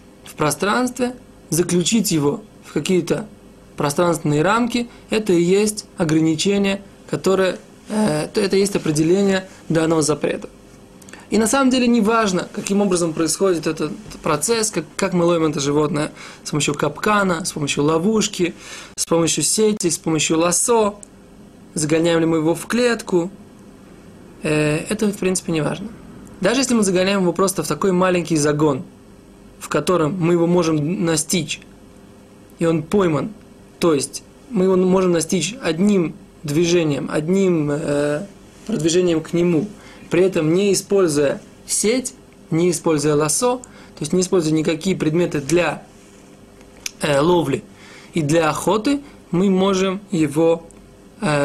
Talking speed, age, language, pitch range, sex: 135 wpm, 20-39, Russian, 155-195 Hz, male